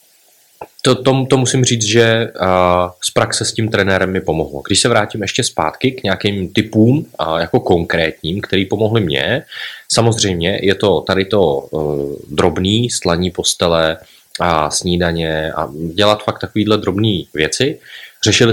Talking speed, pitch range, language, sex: 145 wpm, 90-105 Hz, Czech, male